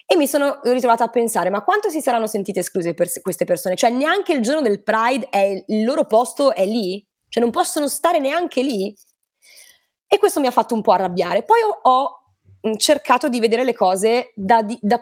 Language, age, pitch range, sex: Italian, 20-39, 175-230 Hz, female